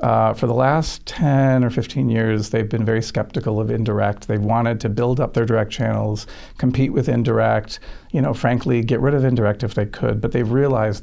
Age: 40-59